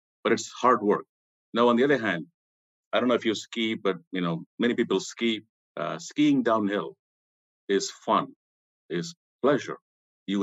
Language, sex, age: English, male, 50-69